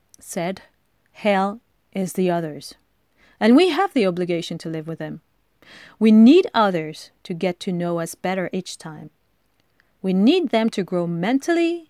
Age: 40-59